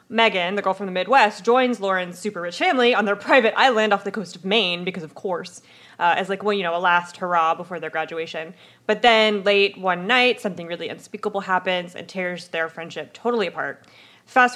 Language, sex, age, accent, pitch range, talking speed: English, female, 20-39, American, 180-235 Hz, 205 wpm